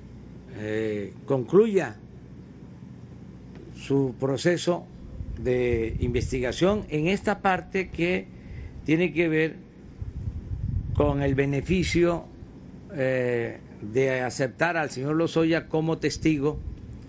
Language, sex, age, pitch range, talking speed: Spanish, male, 50-69, 115-160 Hz, 85 wpm